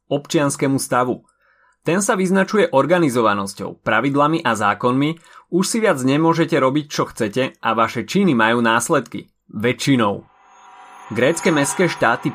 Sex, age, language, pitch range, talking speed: male, 30-49, Slovak, 120-180 Hz, 120 wpm